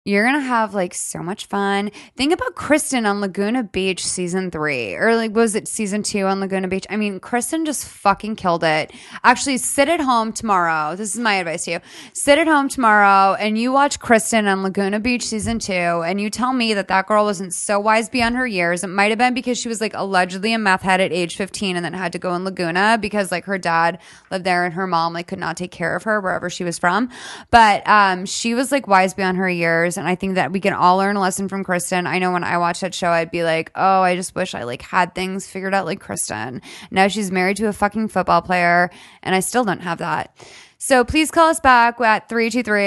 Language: English